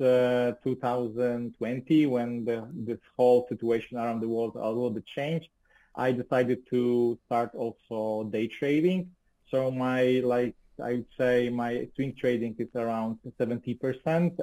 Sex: male